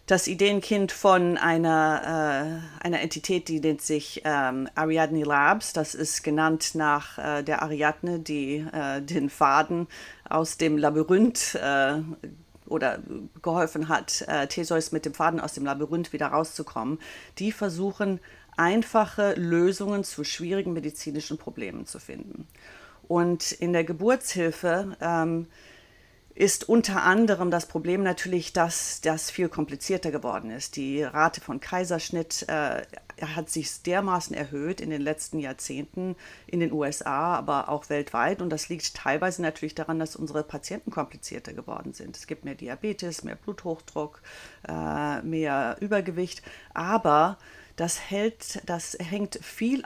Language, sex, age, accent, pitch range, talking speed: German, female, 40-59, German, 150-185 Hz, 135 wpm